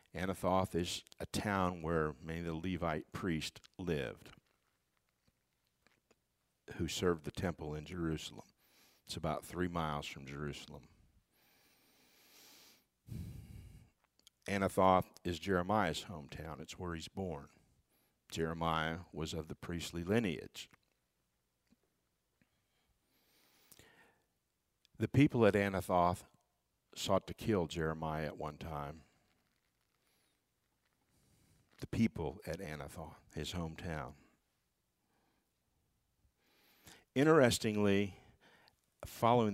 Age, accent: 60-79, American